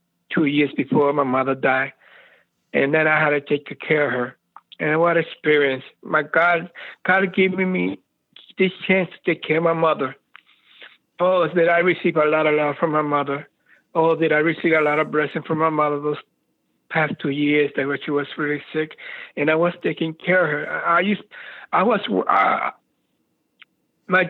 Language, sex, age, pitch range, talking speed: English, male, 60-79, 150-175 Hz, 185 wpm